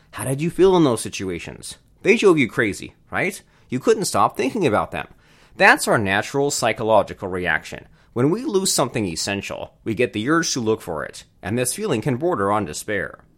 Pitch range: 100-160 Hz